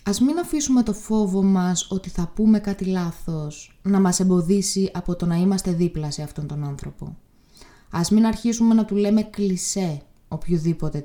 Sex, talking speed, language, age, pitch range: female, 170 wpm, Greek, 20-39, 160-215 Hz